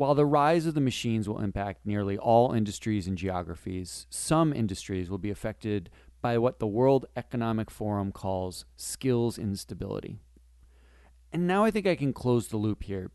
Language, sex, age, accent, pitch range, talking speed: English, male, 40-59, American, 95-150 Hz, 170 wpm